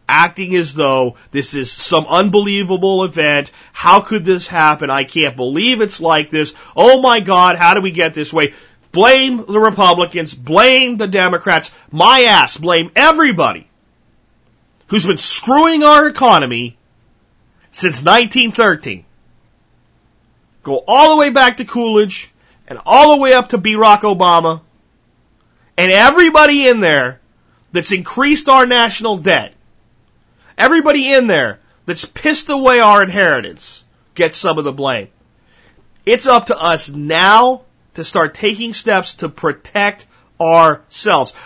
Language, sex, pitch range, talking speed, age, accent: English, male, 165-250 Hz, 135 wpm, 40-59, American